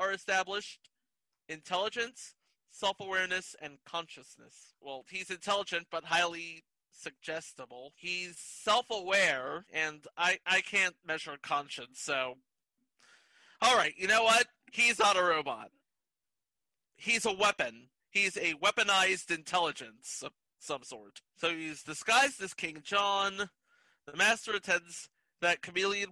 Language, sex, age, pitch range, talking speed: English, male, 30-49, 160-205 Hz, 115 wpm